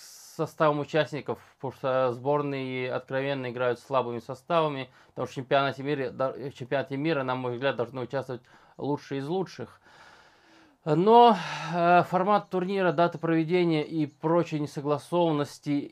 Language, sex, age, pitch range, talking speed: Russian, male, 20-39, 125-155 Hz, 120 wpm